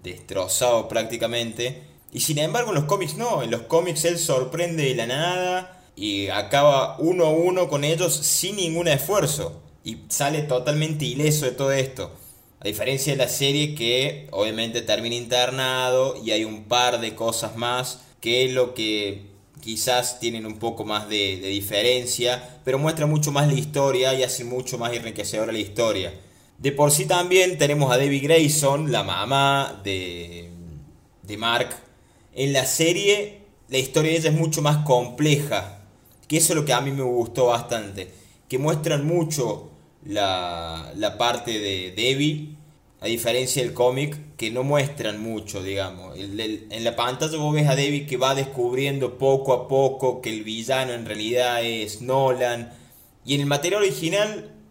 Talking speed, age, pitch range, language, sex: 165 wpm, 20-39, 115-150 Hz, Spanish, male